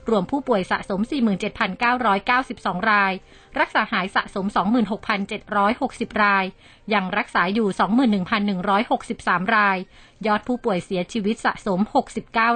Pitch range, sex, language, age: 195-230 Hz, female, Thai, 30-49